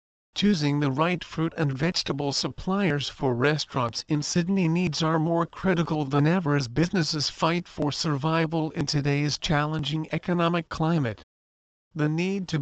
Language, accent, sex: English, American, male